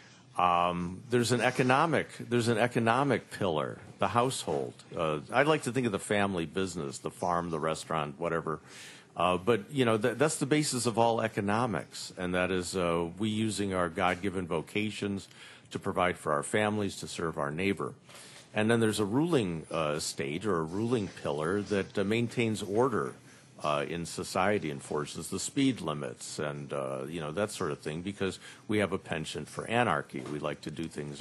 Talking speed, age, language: 195 wpm, 50-69, English